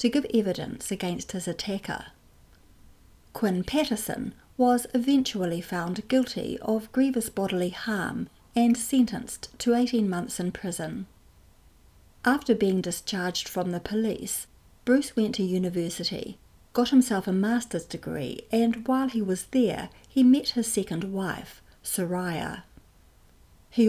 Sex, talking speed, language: female, 125 wpm, English